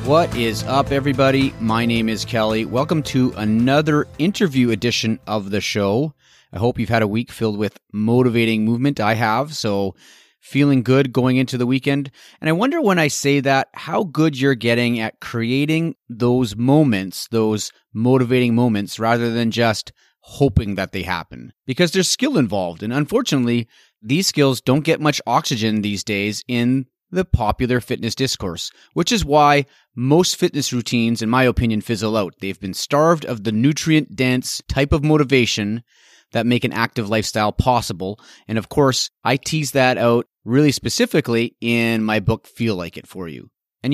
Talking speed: 170 wpm